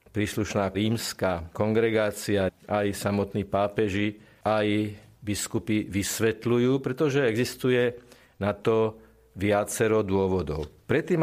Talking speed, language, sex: 85 wpm, Slovak, male